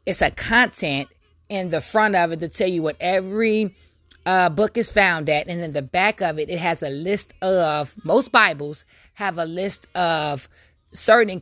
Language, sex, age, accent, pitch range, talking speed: English, female, 20-39, American, 150-195 Hz, 190 wpm